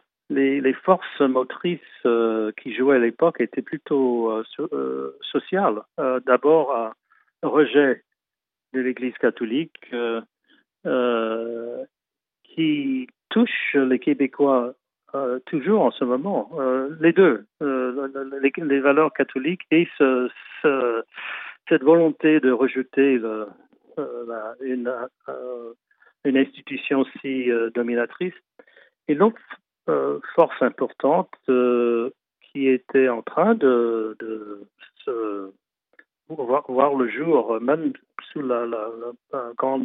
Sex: male